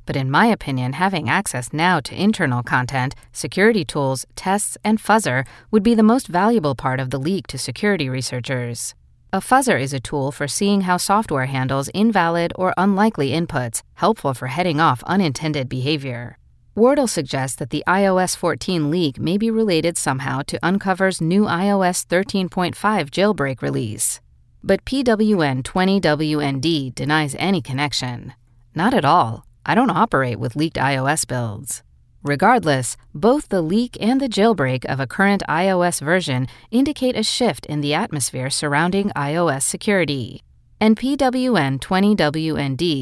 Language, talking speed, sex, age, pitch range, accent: English, 145 wpm, female, 40-59, 135-195 Hz, American